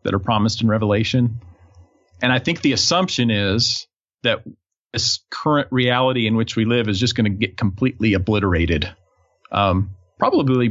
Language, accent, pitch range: English, American, 105-135 Hz